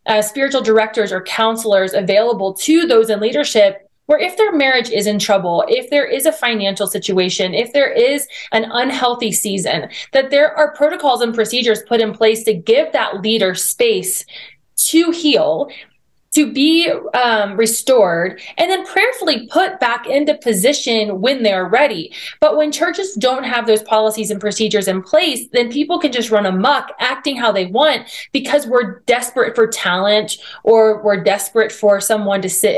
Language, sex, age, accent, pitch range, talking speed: English, female, 20-39, American, 210-285 Hz, 170 wpm